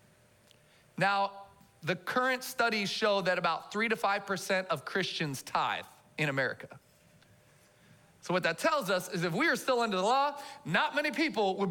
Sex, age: male, 40-59